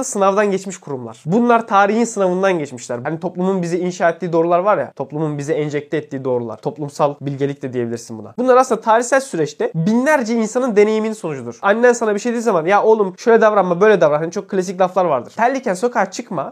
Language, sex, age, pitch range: Turkish, male, 20-39, 180-240 Hz